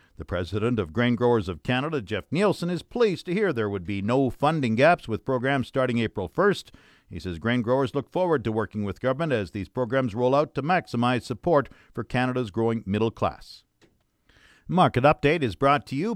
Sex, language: male, English